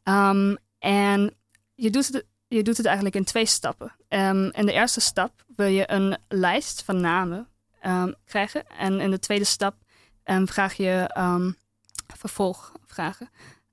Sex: female